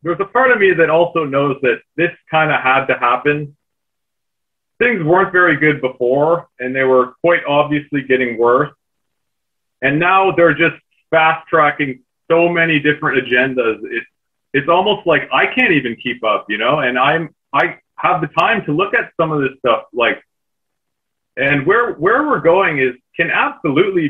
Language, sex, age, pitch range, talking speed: English, male, 30-49, 130-170 Hz, 175 wpm